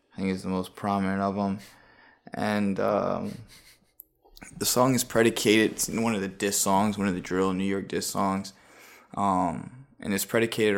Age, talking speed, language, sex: 20-39, 185 wpm, English, male